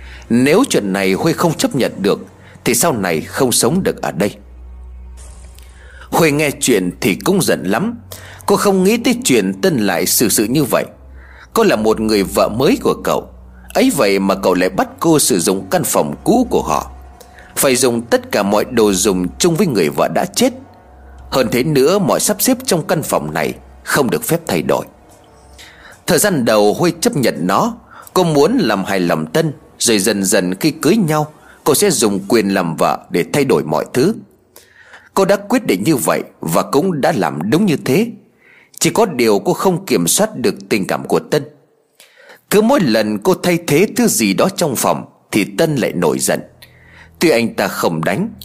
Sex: male